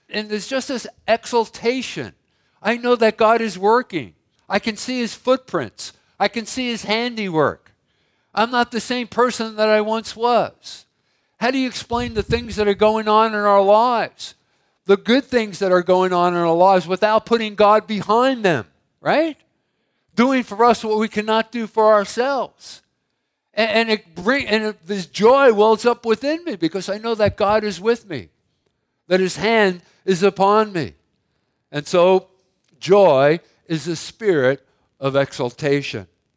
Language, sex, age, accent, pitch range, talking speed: English, male, 50-69, American, 175-230 Hz, 170 wpm